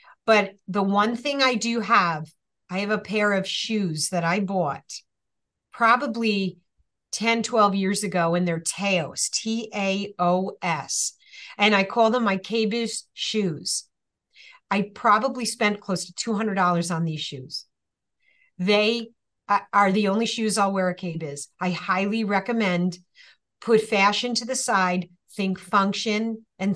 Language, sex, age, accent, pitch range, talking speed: English, female, 40-59, American, 180-220 Hz, 135 wpm